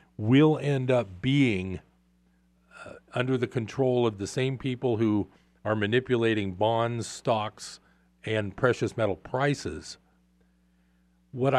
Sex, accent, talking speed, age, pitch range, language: male, American, 115 wpm, 40-59, 95-135 Hz, English